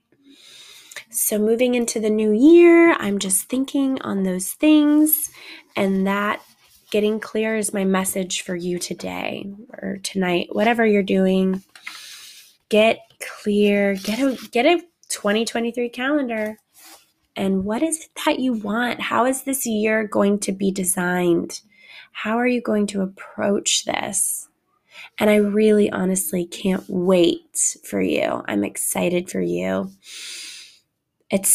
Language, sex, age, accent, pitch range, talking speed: English, female, 20-39, American, 190-245 Hz, 135 wpm